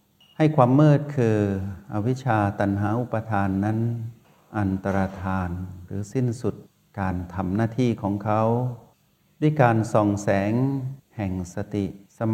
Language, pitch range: Thai, 100-125 Hz